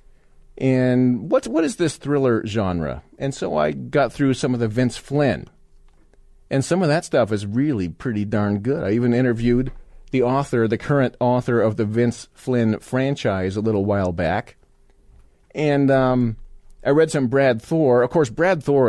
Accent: American